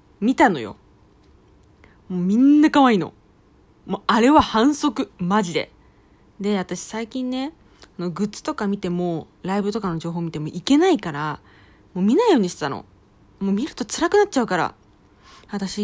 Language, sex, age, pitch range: Japanese, female, 20-39, 175-260 Hz